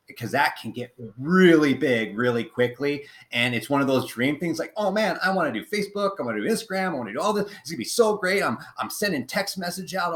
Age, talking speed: 30-49, 265 wpm